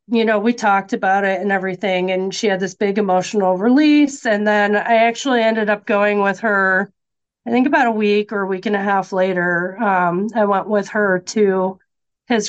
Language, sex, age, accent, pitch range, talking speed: English, female, 40-59, American, 185-215 Hz, 205 wpm